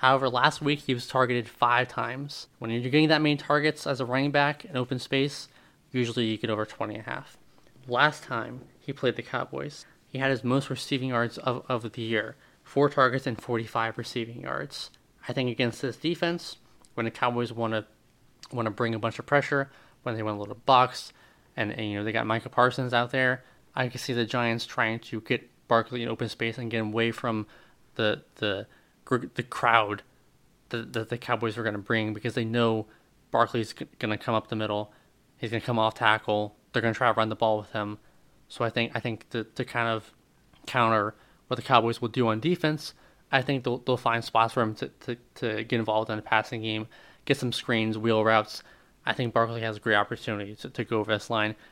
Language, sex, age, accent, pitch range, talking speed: English, male, 20-39, American, 110-130 Hz, 215 wpm